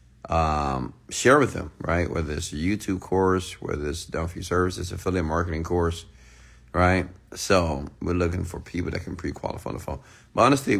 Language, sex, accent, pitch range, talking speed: English, male, American, 80-95 Hz, 185 wpm